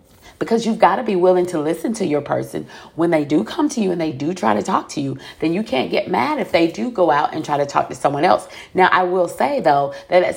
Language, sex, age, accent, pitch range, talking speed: English, female, 40-59, American, 145-175 Hz, 285 wpm